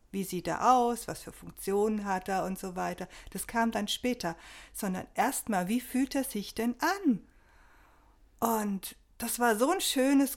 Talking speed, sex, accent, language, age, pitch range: 175 wpm, female, German, German, 50-69, 190-240 Hz